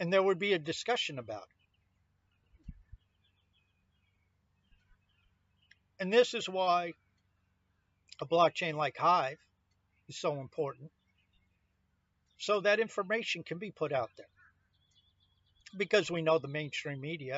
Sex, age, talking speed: male, 50-69, 115 wpm